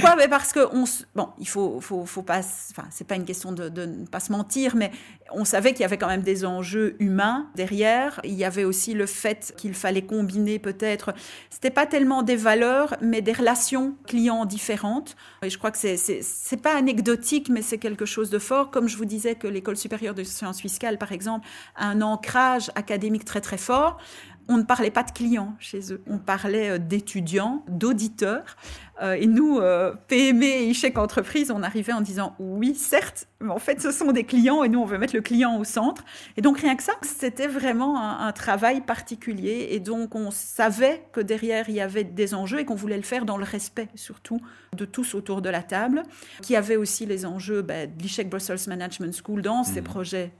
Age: 40-59